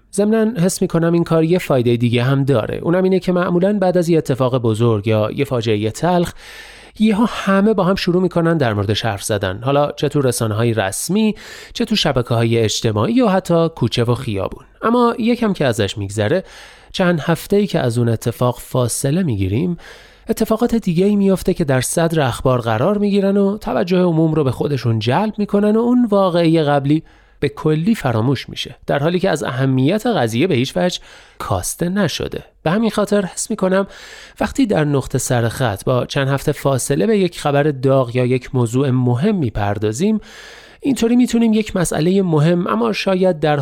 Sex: male